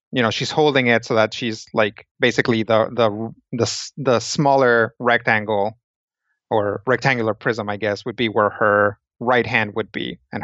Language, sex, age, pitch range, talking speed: English, male, 30-49, 110-130 Hz, 170 wpm